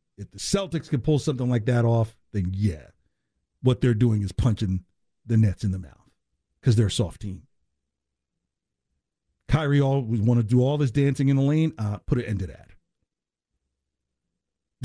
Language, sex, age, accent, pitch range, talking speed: English, male, 50-69, American, 105-155 Hz, 170 wpm